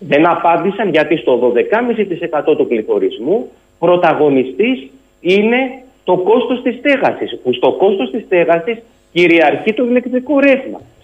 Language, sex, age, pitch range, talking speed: Greek, male, 40-59, 125-210 Hz, 120 wpm